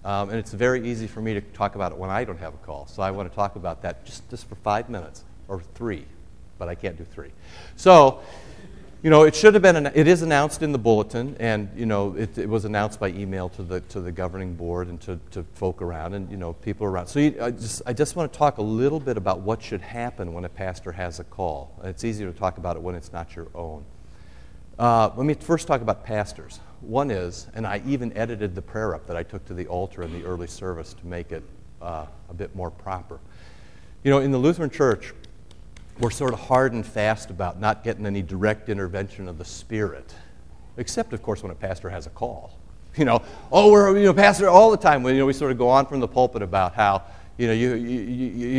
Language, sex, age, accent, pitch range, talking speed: English, male, 50-69, American, 90-120 Hz, 250 wpm